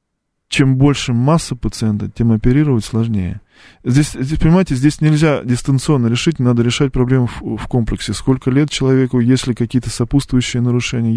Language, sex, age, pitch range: Russian, male, 20-39, 115-140 Hz